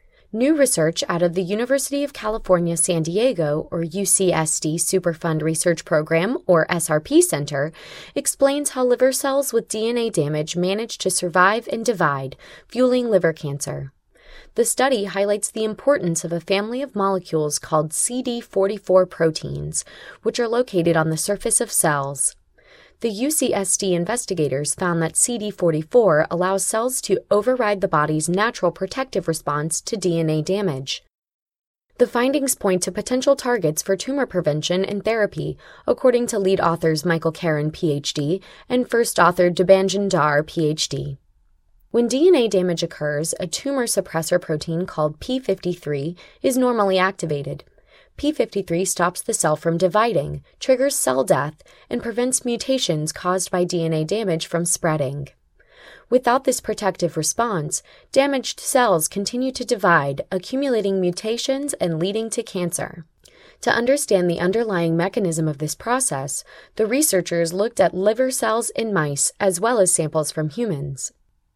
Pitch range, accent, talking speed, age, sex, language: 165-235 Hz, American, 140 wpm, 20-39, female, English